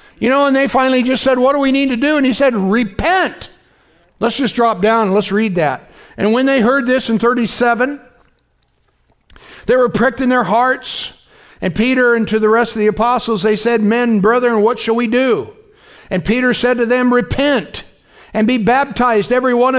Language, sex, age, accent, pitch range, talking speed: English, male, 60-79, American, 215-295 Hz, 200 wpm